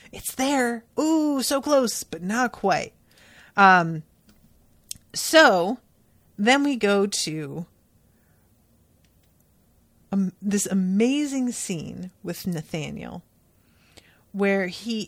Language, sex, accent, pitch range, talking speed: English, female, American, 170-235 Hz, 90 wpm